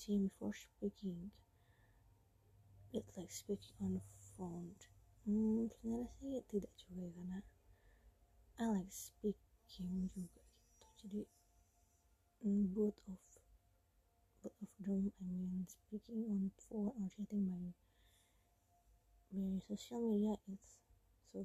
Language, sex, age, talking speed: English, female, 20-39, 100 wpm